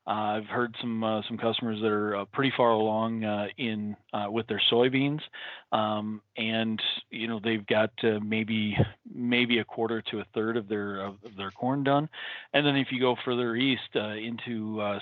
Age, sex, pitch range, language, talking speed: 40-59, male, 105-125 Hz, English, 195 wpm